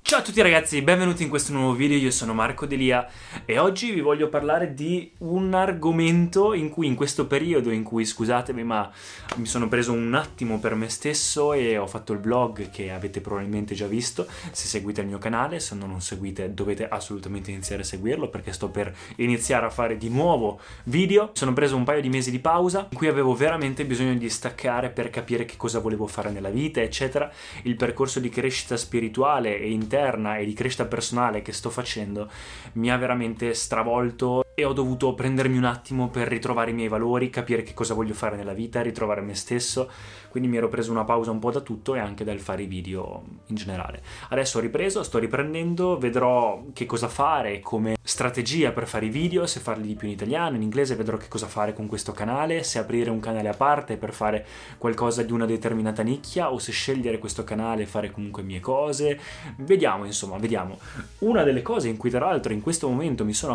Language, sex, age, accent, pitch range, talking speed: Italian, male, 20-39, native, 110-135 Hz, 210 wpm